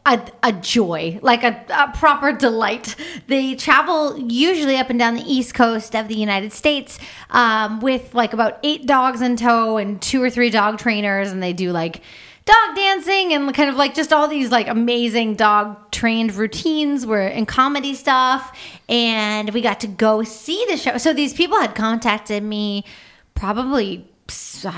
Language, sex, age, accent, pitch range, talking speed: English, female, 30-49, American, 200-265 Hz, 175 wpm